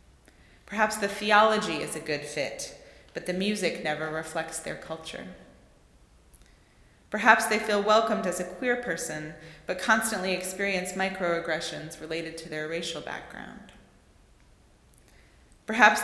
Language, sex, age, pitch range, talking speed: English, female, 30-49, 165-205 Hz, 120 wpm